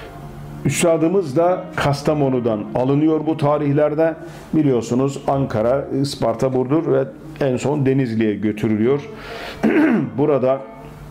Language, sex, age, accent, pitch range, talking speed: Turkish, male, 50-69, native, 115-145 Hz, 85 wpm